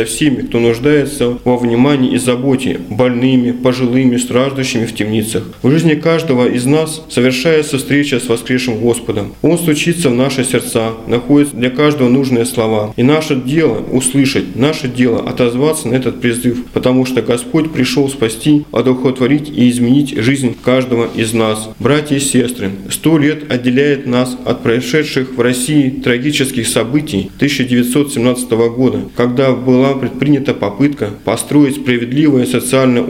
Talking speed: 140 wpm